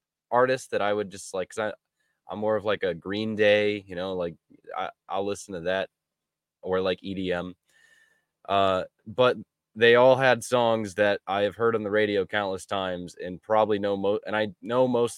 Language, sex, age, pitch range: English, male, 10-29, 95-120 Hz